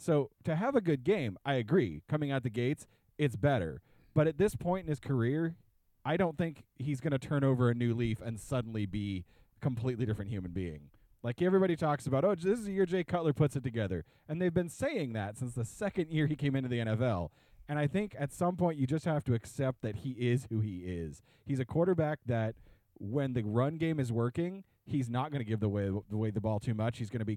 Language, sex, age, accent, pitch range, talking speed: English, male, 30-49, American, 115-155 Hz, 245 wpm